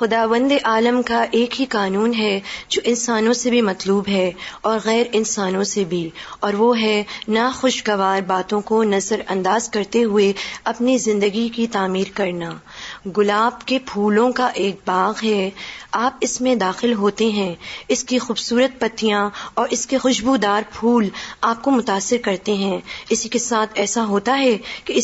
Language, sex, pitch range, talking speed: Urdu, female, 195-240 Hz, 160 wpm